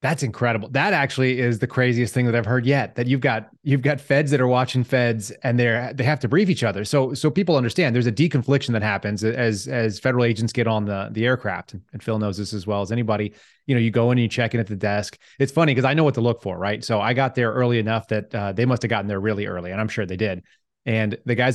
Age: 30-49